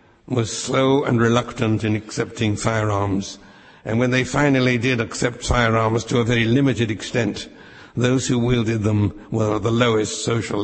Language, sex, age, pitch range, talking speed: English, male, 60-79, 110-125 Hz, 160 wpm